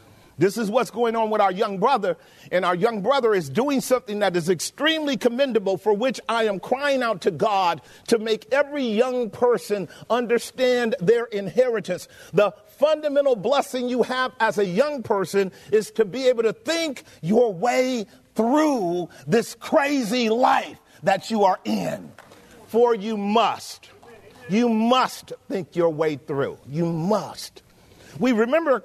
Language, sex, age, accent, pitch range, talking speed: English, male, 50-69, American, 200-250 Hz, 155 wpm